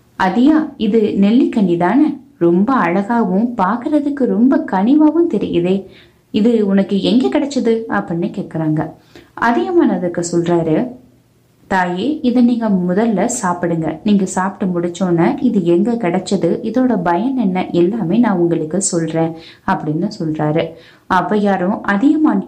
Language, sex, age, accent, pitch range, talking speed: Tamil, female, 20-39, native, 175-230 Hz, 110 wpm